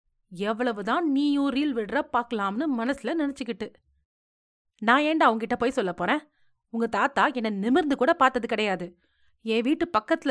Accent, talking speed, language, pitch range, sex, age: native, 135 wpm, Tamil, 195-280 Hz, female, 30-49